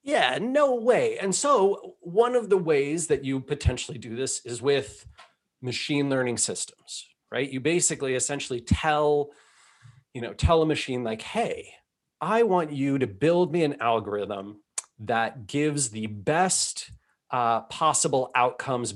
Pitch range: 120-155 Hz